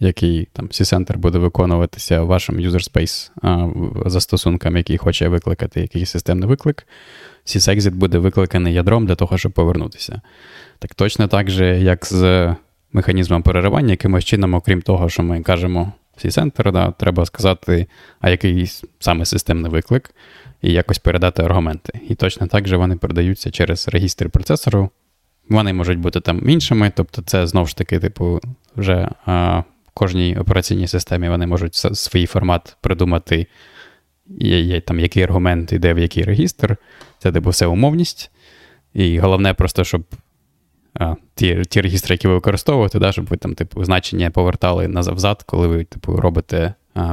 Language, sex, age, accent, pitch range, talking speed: Ukrainian, male, 20-39, native, 85-100 Hz, 150 wpm